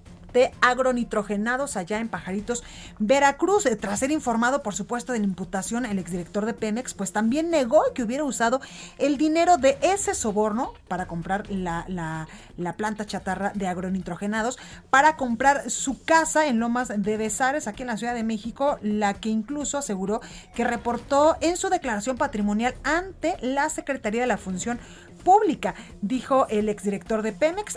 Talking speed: 160 wpm